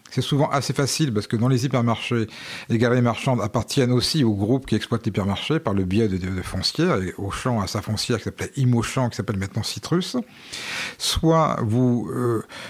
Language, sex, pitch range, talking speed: French, male, 105-130 Hz, 205 wpm